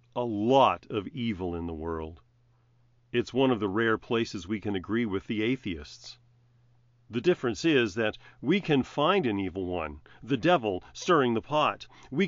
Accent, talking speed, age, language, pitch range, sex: American, 170 wpm, 40-59, English, 115-145 Hz, male